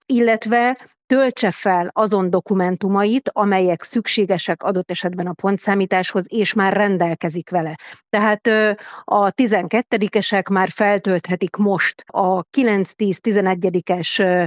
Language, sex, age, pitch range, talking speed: Hungarian, female, 30-49, 180-205 Hz, 95 wpm